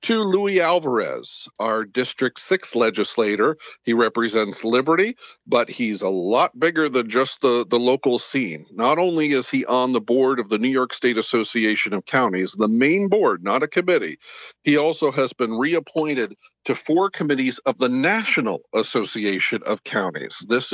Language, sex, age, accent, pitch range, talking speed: English, male, 50-69, American, 115-150 Hz, 165 wpm